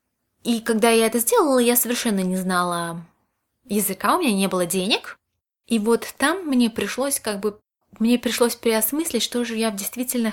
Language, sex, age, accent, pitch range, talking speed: Russian, female, 20-39, native, 200-245 Hz, 170 wpm